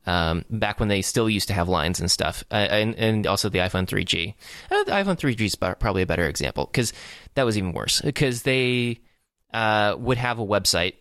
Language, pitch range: English, 95-115 Hz